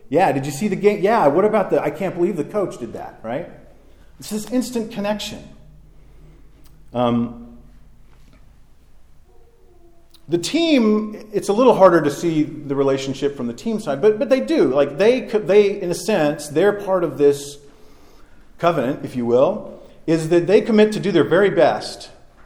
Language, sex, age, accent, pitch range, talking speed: English, male, 40-59, American, 140-205 Hz, 170 wpm